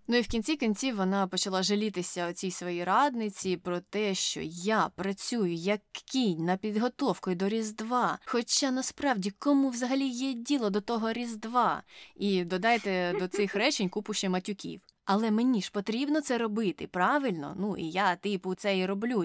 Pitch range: 180-225 Hz